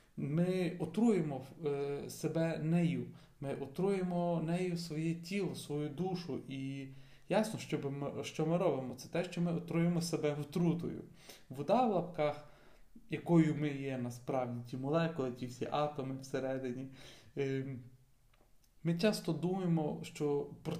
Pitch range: 145-170 Hz